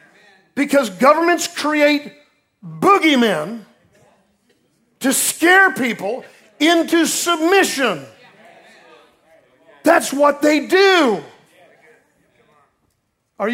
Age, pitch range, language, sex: 50-69, 190-275 Hz, English, male